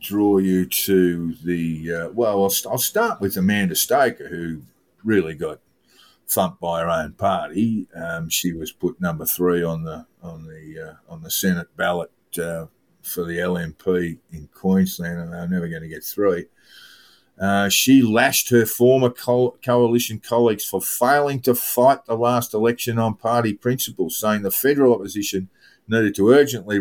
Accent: Australian